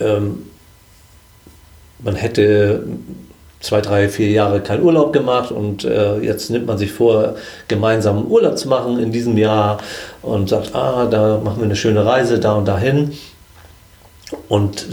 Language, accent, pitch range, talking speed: German, German, 105-115 Hz, 140 wpm